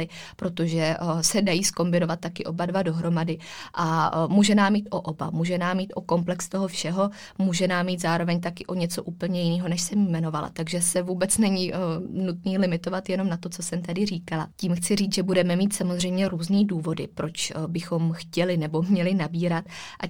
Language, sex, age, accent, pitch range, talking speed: Czech, female, 20-39, native, 170-195 Hz, 195 wpm